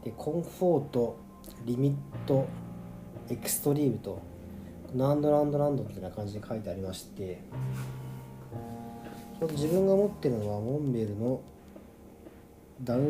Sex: male